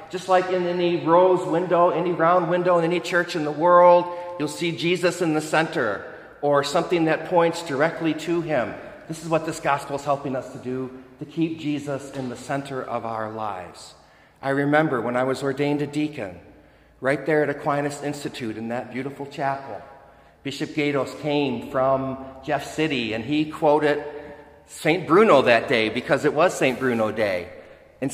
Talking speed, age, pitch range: 180 wpm, 40-59, 130-165 Hz